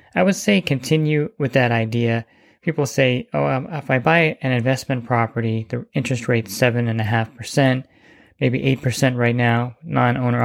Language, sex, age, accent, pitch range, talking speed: English, male, 20-39, American, 115-135 Hz, 150 wpm